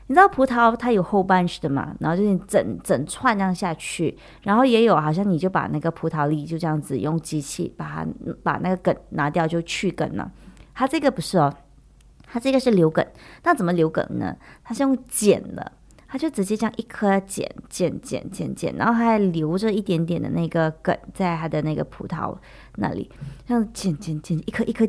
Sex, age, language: female, 30-49, English